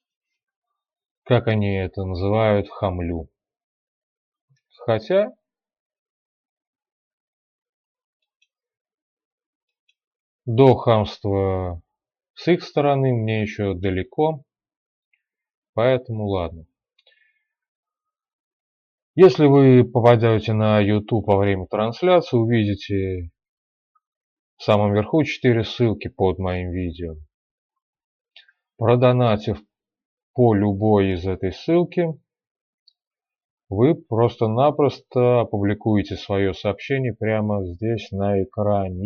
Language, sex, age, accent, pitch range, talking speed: Russian, male, 30-49, native, 100-160 Hz, 75 wpm